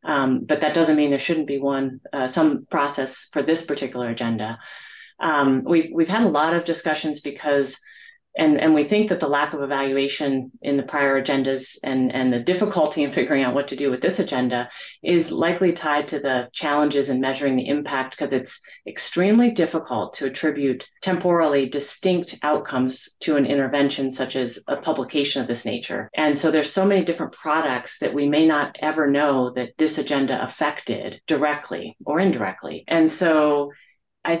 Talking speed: 180 wpm